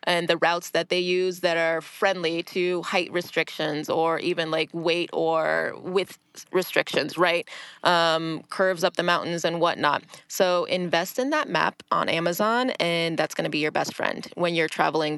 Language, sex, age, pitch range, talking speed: English, female, 20-39, 165-190 Hz, 180 wpm